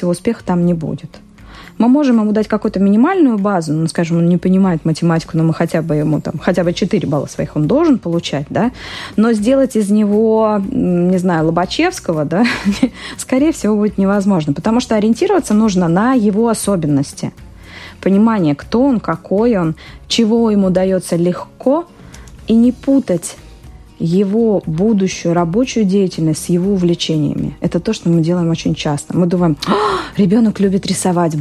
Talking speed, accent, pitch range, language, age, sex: 160 wpm, native, 175-225 Hz, Russian, 20-39, female